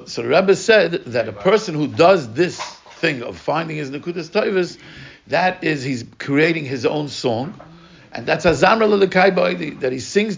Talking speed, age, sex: 180 wpm, 60-79, male